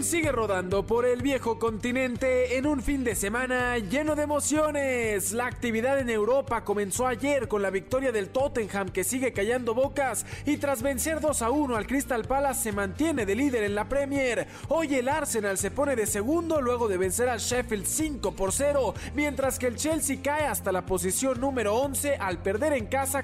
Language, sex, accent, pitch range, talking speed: Spanish, male, Mexican, 210-280 Hz, 190 wpm